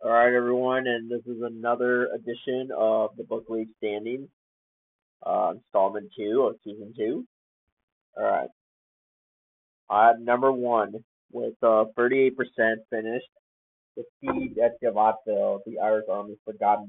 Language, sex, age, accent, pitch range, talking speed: English, male, 30-49, American, 105-120 Hz, 120 wpm